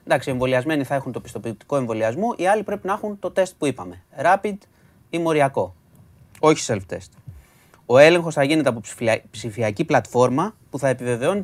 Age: 30-49